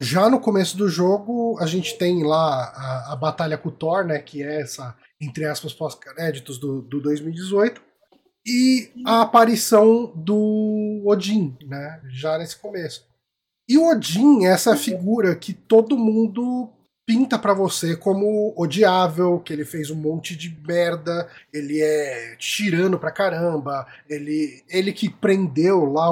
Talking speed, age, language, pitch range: 145 wpm, 20-39, Portuguese, 150-195 Hz